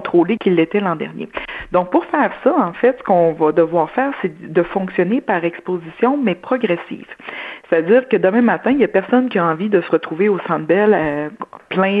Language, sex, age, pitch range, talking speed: French, female, 50-69, 170-225 Hz, 205 wpm